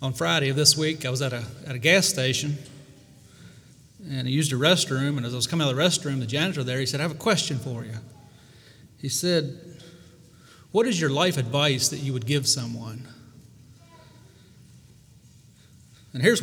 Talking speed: 190 wpm